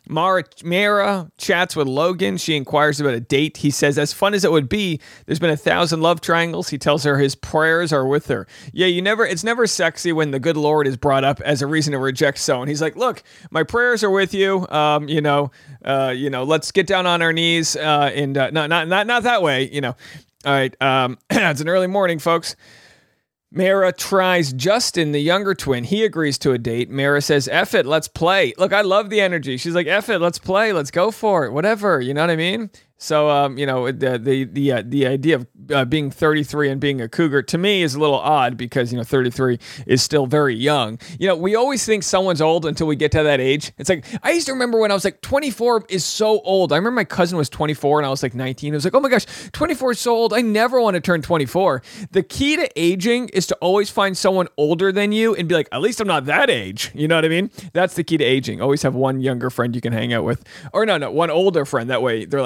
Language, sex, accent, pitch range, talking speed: English, male, American, 140-190 Hz, 255 wpm